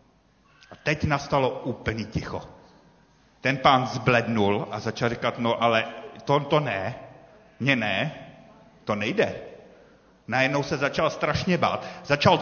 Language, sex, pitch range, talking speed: Czech, male, 130-180 Hz, 125 wpm